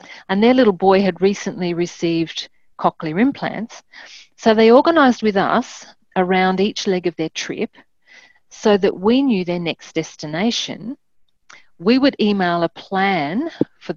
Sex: female